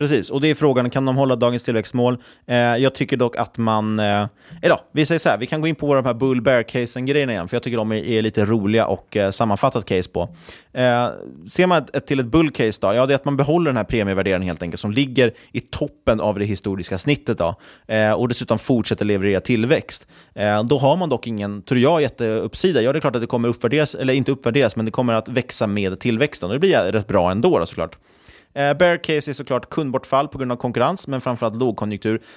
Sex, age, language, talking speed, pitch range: male, 30-49, Swedish, 230 wpm, 110-140 Hz